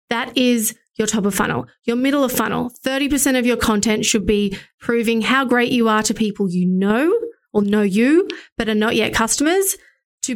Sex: female